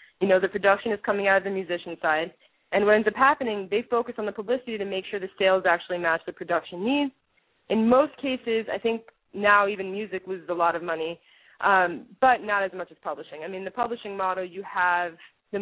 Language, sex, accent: English, female, American